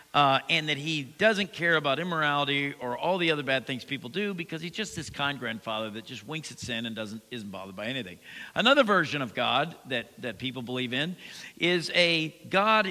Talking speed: 210 wpm